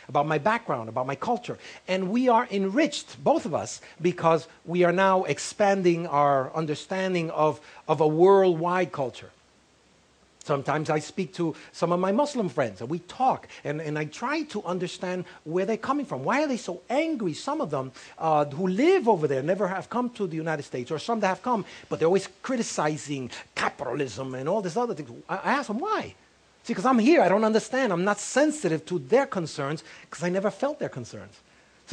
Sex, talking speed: male, 200 wpm